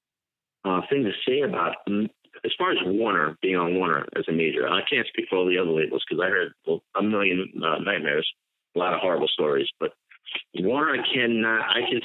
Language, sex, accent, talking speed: English, male, American, 205 wpm